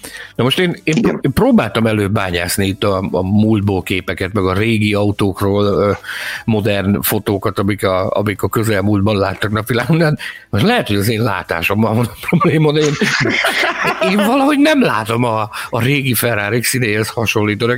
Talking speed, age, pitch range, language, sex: 150 wpm, 60-79, 95-125 Hz, Hungarian, male